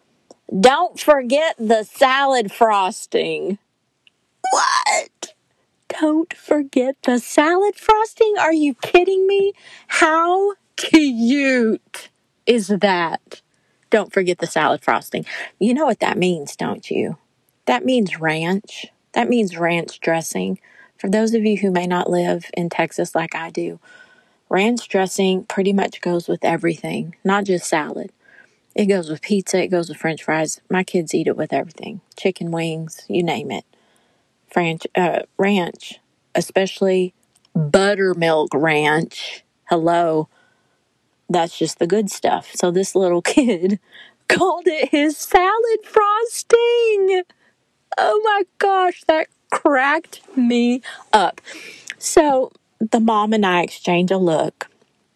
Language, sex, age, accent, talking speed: English, female, 40-59, American, 125 wpm